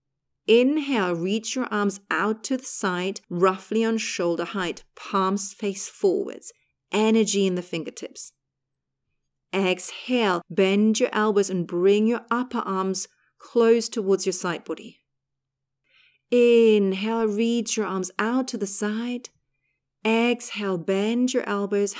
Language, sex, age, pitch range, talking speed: English, female, 40-59, 180-220 Hz, 125 wpm